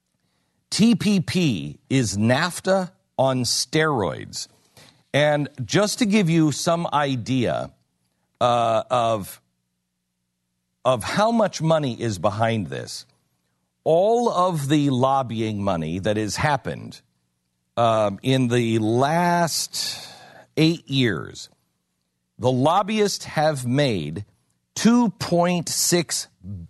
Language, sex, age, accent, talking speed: English, male, 50-69, American, 90 wpm